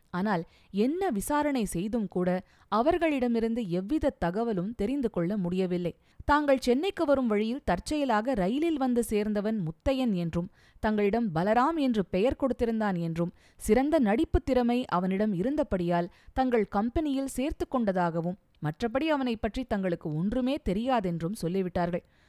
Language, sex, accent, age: Tamil, female, native, 20-39